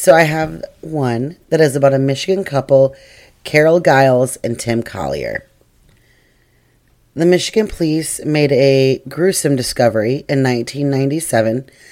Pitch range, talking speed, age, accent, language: 130-155 Hz, 120 wpm, 30-49, American, English